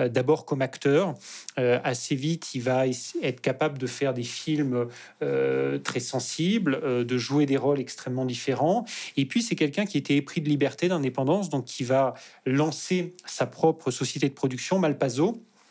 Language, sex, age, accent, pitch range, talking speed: French, male, 30-49, French, 130-160 Hz, 170 wpm